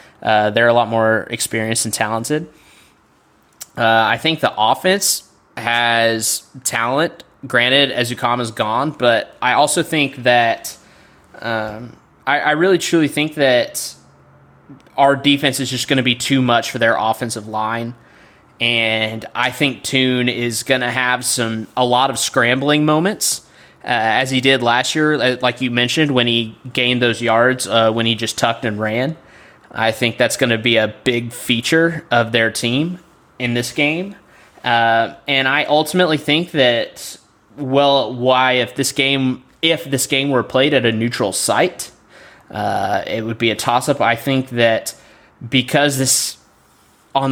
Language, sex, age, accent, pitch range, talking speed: English, male, 20-39, American, 115-140 Hz, 160 wpm